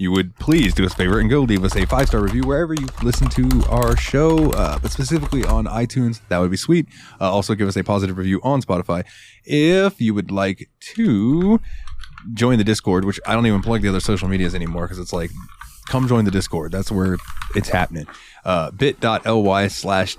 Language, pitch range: English, 95-125 Hz